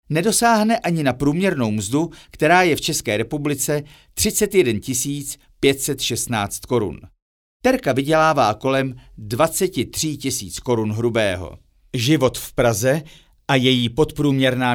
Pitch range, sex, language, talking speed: 120-165 Hz, male, Czech, 105 wpm